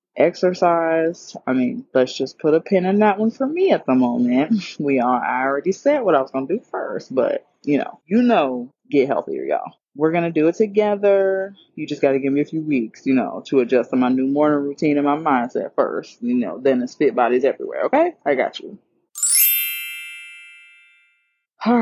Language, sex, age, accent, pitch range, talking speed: English, female, 20-39, American, 140-190 Hz, 200 wpm